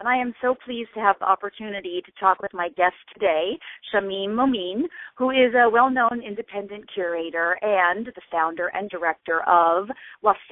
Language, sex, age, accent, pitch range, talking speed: English, female, 40-59, American, 180-240 Hz, 170 wpm